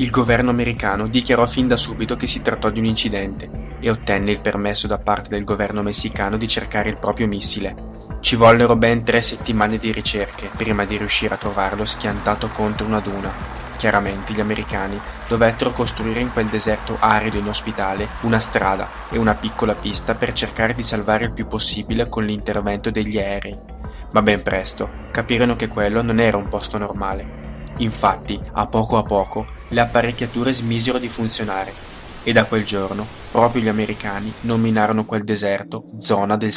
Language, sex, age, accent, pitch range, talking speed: Italian, male, 20-39, native, 105-115 Hz, 170 wpm